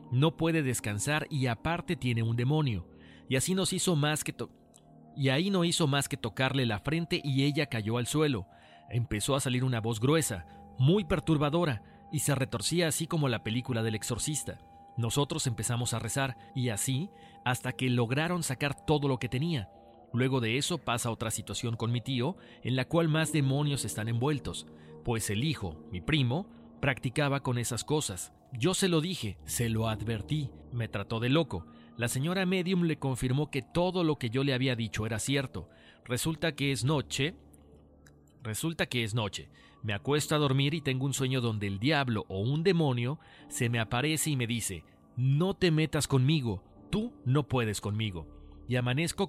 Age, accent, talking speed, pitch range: 40-59, Mexican, 180 wpm, 110-150 Hz